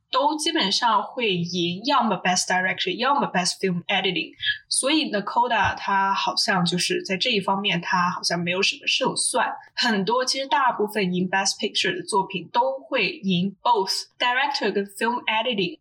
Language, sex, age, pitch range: Chinese, female, 10-29, 185-255 Hz